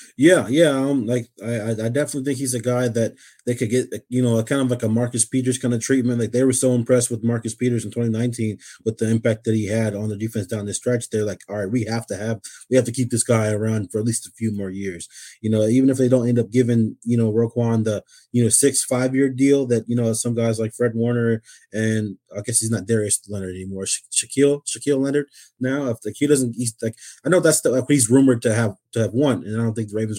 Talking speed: 265 wpm